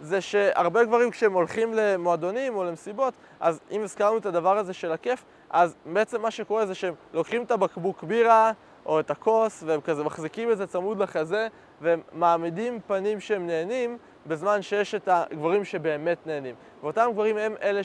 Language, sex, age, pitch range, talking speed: Hebrew, male, 20-39, 160-220 Hz, 170 wpm